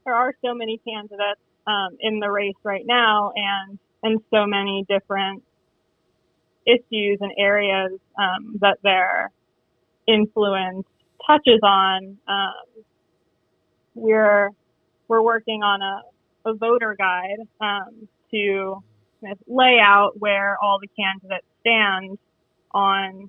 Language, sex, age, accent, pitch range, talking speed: English, female, 20-39, American, 195-220 Hz, 120 wpm